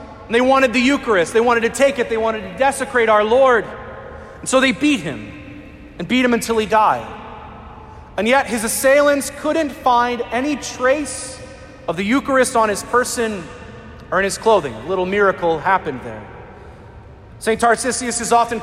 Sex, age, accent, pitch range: male, 40-59, American, 190-260 Hz